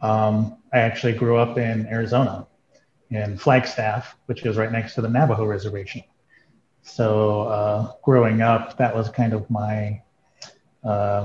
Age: 30-49